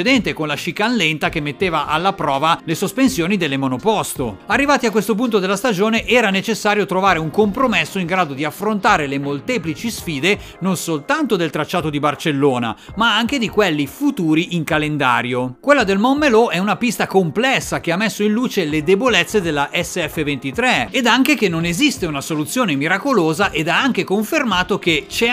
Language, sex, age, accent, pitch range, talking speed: Italian, male, 40-59, native, 155-220 Hz, 175 wpm